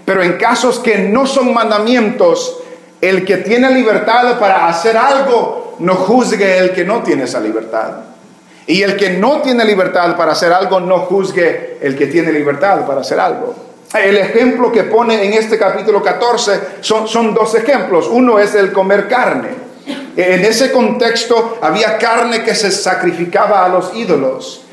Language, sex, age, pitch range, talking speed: English, male, 40-59, 185-245 Hz, 165 wpm